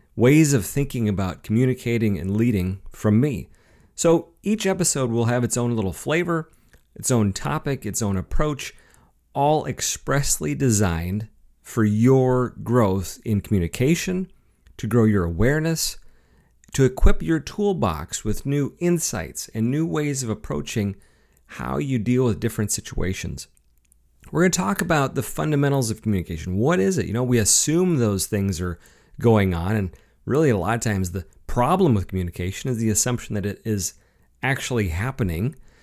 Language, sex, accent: English, male, American